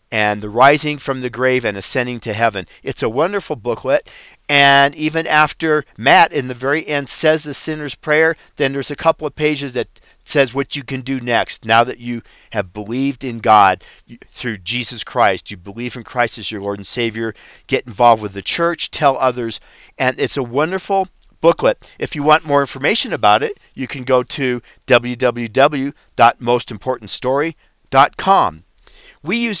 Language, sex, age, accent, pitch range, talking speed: English, male, 50-69, American, 115-145 Hz, 170 wpm